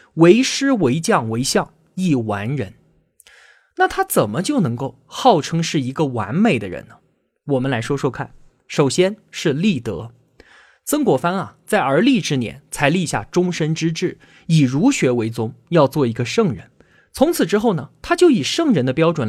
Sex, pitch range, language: male, 130-210 Hz, Chinese